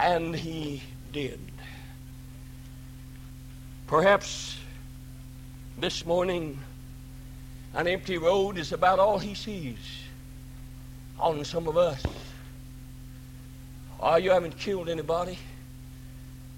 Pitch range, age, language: 130-175 Hz, 60-79, English